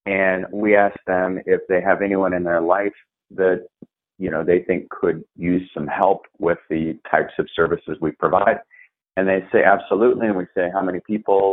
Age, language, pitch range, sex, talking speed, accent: 30-49, English, 90-105 Hz, male, 195 wpm, American